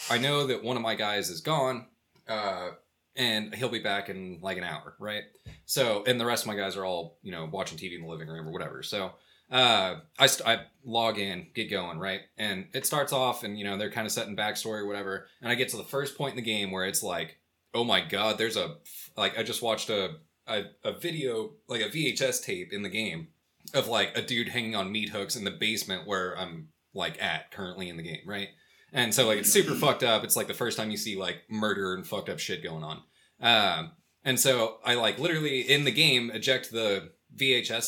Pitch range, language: 105-135 Hz, English